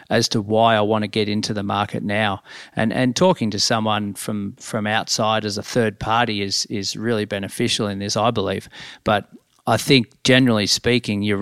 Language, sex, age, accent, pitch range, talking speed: English, male, 40-59, Australian, 105-120 Hz, 195 wpm